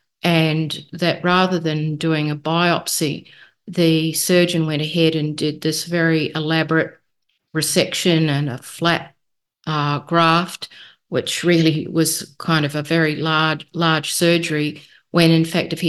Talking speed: 140 wpm